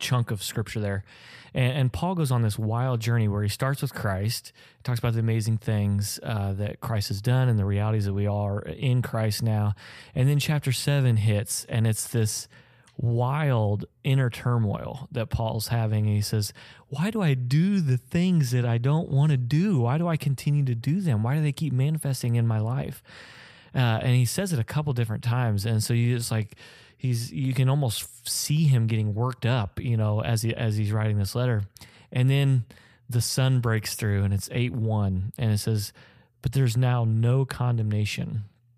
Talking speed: 200 wpm